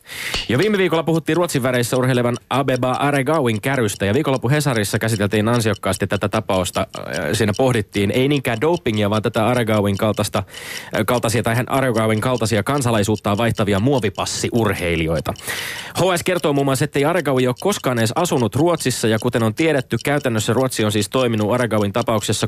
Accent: native